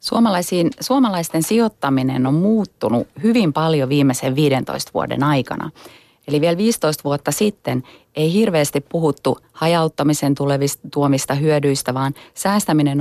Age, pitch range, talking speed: 30-49, 140-170 Hz, 105 wpm